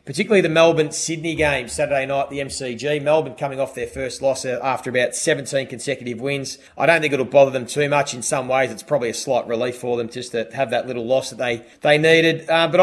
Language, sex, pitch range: English, male, 130-155 Hz